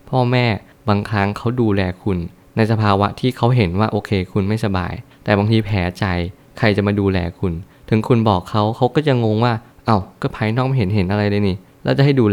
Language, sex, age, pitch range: Thai, male, 20-39, 100-120 Hz